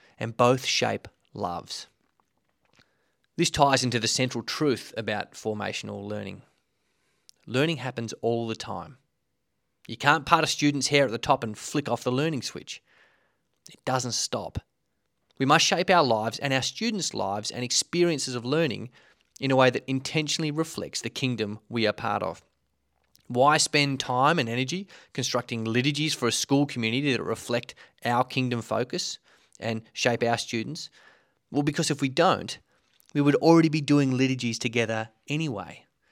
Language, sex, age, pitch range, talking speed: English, male, 30-49, 115-140 Hz, 155 wpm